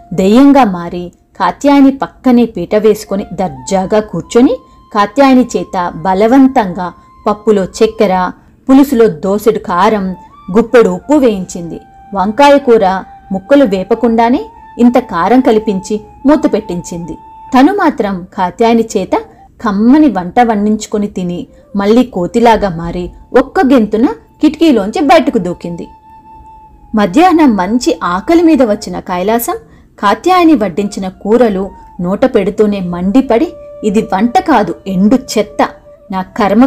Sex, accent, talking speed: female, native, 100 wpm